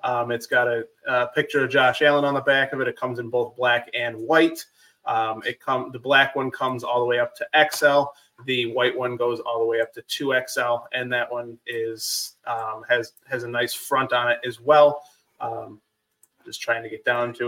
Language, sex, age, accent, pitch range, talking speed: English, male, 20-39, American, 120-145 Hz, 225 wpm